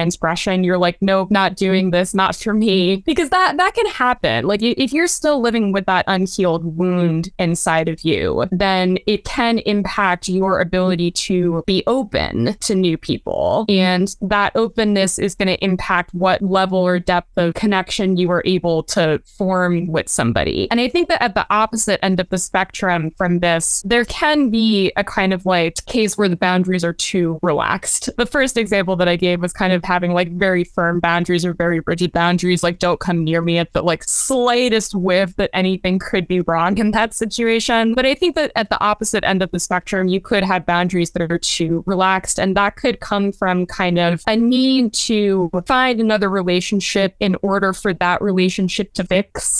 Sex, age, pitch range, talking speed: female, 20-39, 180-220 Hz, 195 wpm